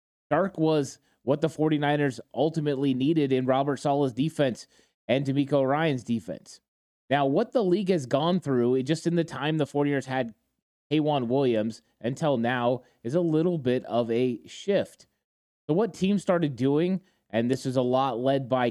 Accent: American